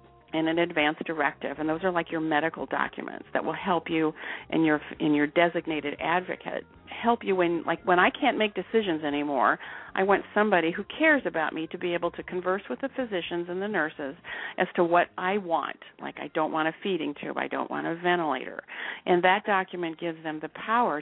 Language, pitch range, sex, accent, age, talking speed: English, 160-200 Hz, female, American, 50-69, 210 wpm